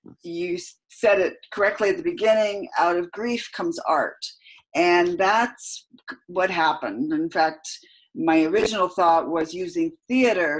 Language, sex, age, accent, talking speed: English, female, 50-69, American, 135 wpm